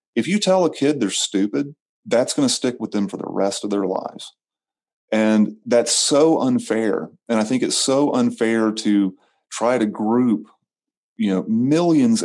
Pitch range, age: 105-165 Hz, 30-49